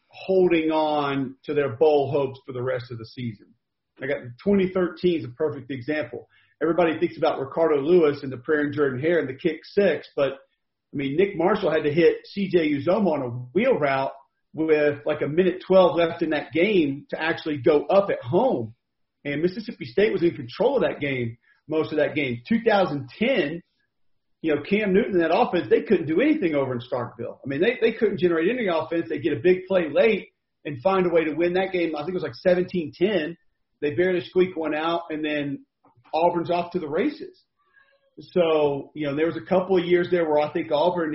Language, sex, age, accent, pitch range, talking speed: English, male, 40-59, American, 145-180 Hz, 210 wpm